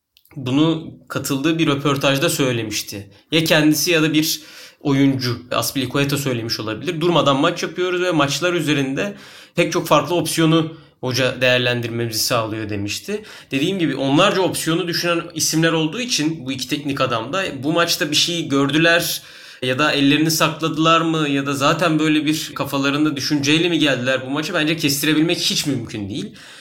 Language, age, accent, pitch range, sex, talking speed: Turkish, 30-49, native, 140-170 Hz, male, 150 wpm